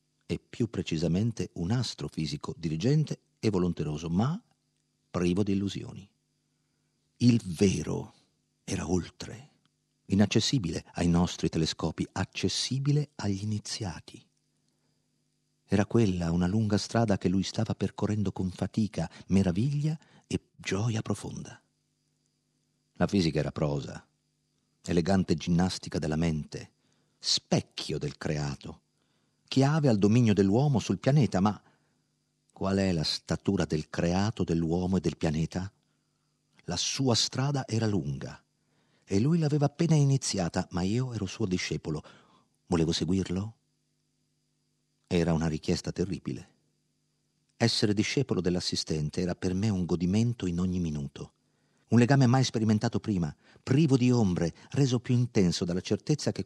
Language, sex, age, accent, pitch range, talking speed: Italian, male, 50-69, native, 90-120 Hz, 120 wpm